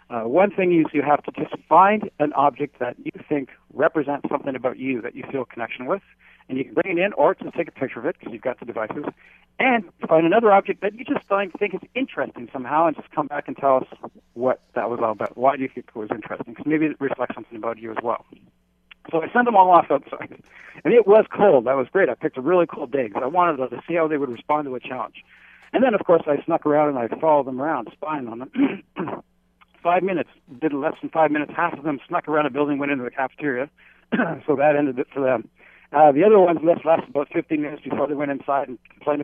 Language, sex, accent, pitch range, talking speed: English, male, American, 135-175 Hz, 255 wpm